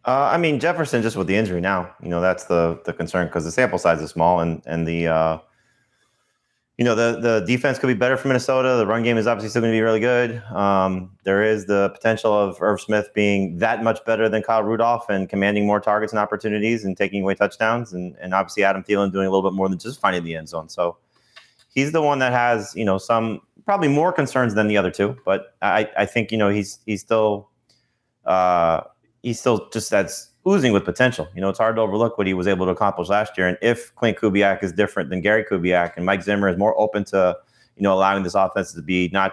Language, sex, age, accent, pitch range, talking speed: English, male, 30-49, American, 95-115 Hz, 245 wpm